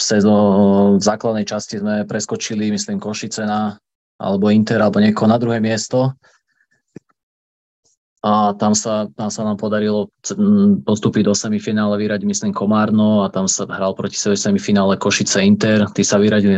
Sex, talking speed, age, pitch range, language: male, 140 wpm, 20-39, 105-120 Hz, Slovak